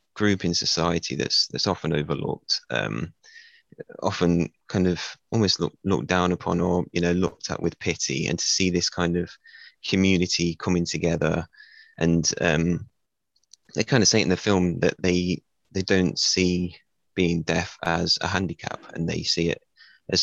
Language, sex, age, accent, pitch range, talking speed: English, male, 20-39, British, 85-90 Hz, 165 wpm